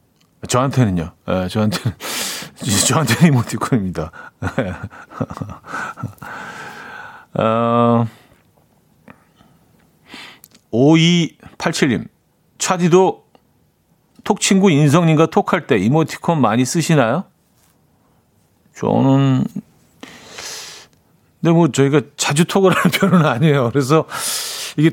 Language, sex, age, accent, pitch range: Korean, male, 40-59, native, 120-175 Hz